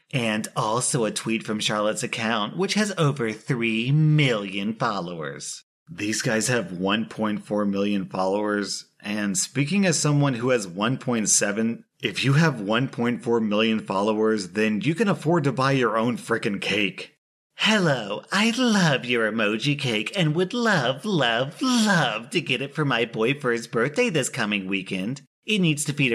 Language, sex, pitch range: English, male, 110-160 Hz